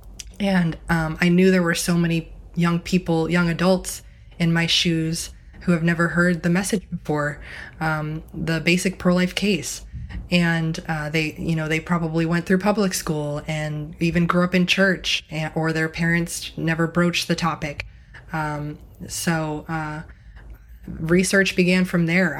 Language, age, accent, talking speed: English, 20-39, American, 155 wpm